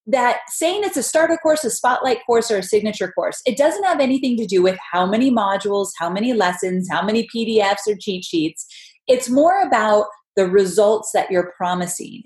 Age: 30-49